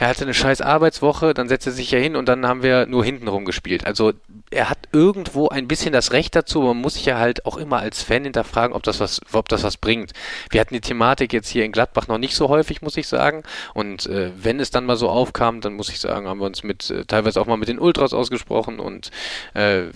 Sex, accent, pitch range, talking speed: male, German, 105-125 Hz, 260 wpm